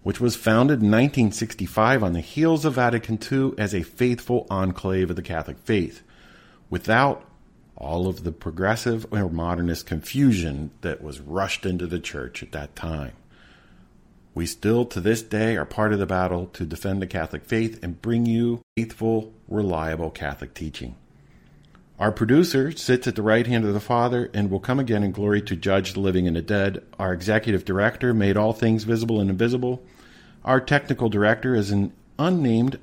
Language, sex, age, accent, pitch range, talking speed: English, male, 50-69, American, 85-115 Hz, 175 wpm